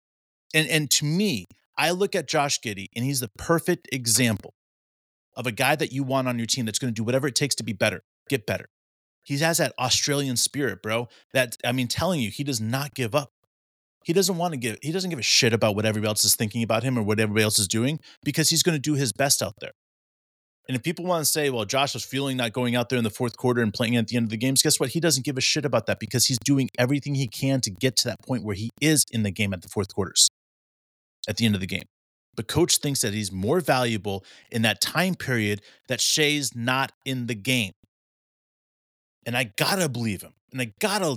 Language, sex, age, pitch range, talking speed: English, male, 30-49, 115-155 Hz, 250 wpm